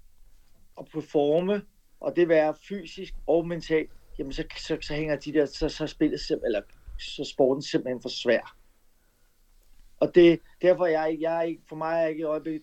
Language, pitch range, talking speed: Danish, 125-155 Hz, 180 wpm